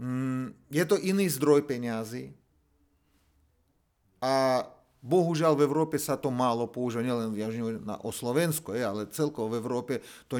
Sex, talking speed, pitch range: male, 120 wpm, 120-155 Hz